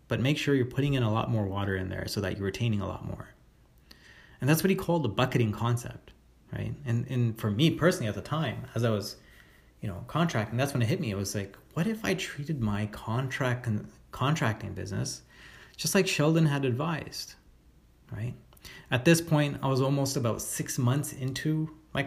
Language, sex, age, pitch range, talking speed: English, male, 30-49, 105-135 Hz, 205 wpm